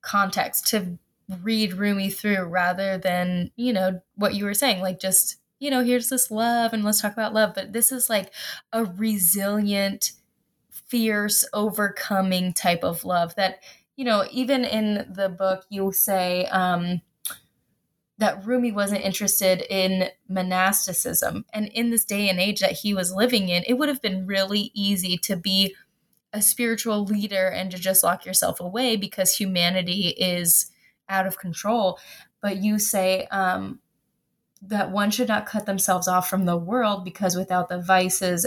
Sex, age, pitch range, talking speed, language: female, 20-39, 185-215 Hz, 160 wpm, English